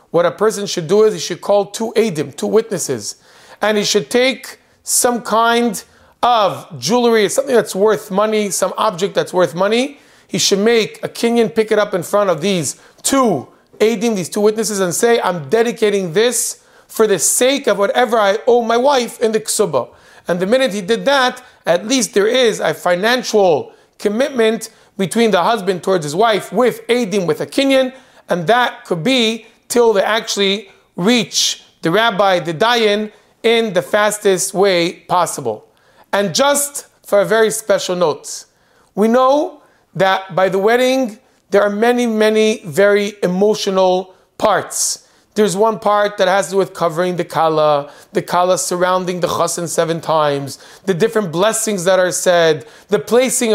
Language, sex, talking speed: English, male, 170 wpm